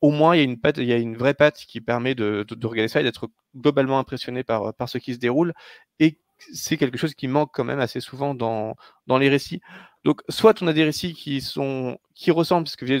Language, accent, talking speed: French, French, 265 wpm